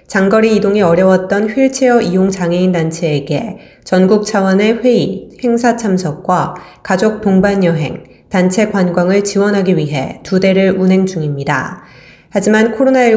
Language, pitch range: Korean, 175-210 Hz